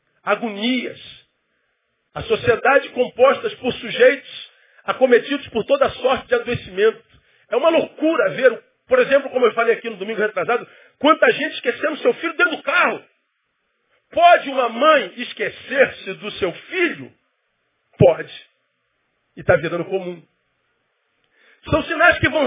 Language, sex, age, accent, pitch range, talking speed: Portuguese, male, 40-59, Brazilian, 230-315 Hz, 130 wpm